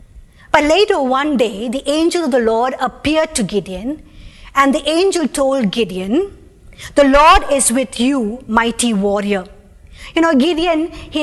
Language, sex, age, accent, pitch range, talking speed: English, female, 50-69, Indian, 230-305 Hz, 150 wpm